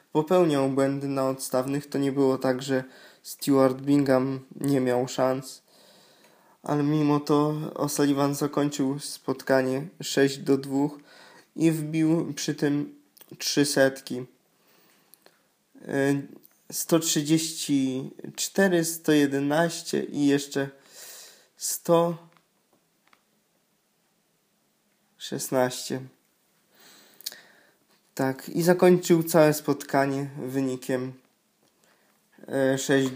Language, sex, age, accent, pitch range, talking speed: Polish, male, 20-39, native, 130-145 Hz, 75 wpm